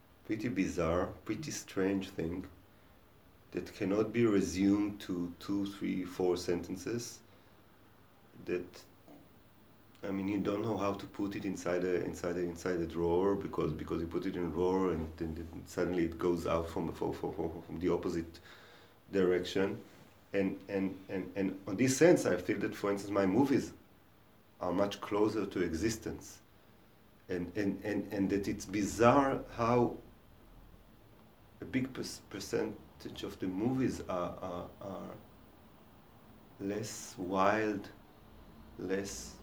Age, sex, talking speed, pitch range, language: 40-59, male, 140 wpm, 90-105 Hz, English